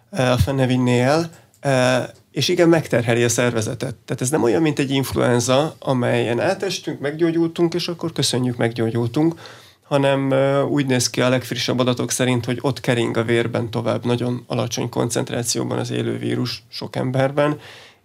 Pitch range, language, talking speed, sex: 115-130 Hz, Hungarian, 145 wpm, male